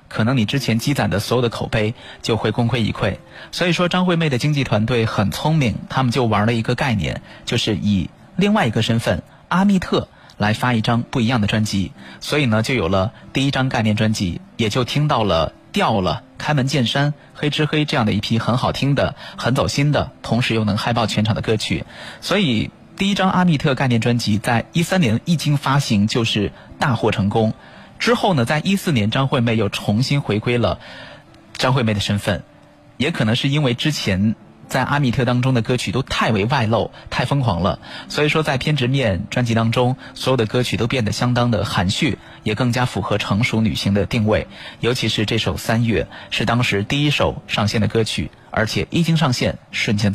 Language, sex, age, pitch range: Chinese, male, 30-49, 110-140 Hz